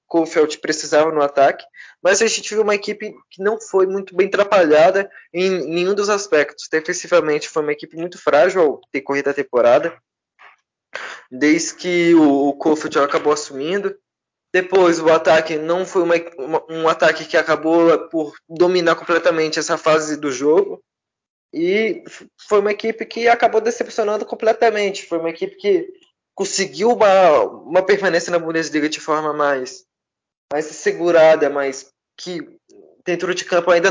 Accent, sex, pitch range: Brazilian, male, 160-205 Hz